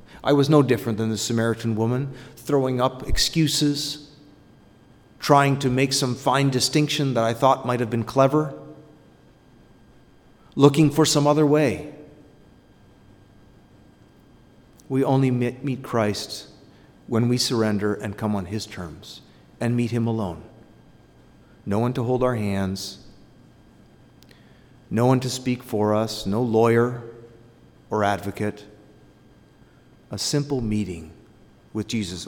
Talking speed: 125 wpm